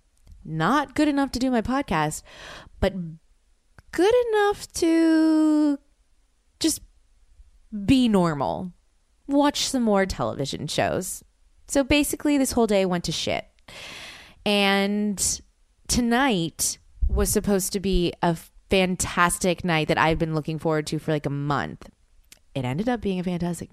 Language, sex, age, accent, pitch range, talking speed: English, female, 20-39, American, 155-205 Hz, 130 wpm